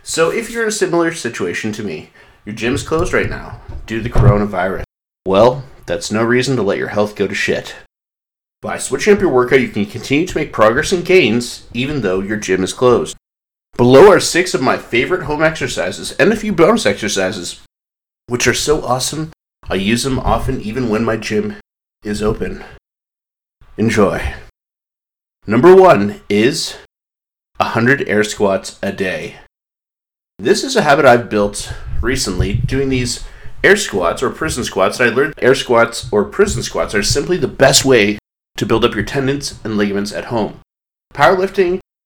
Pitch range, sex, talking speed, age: 105-135 Hz, male, 175 wpm, 30-49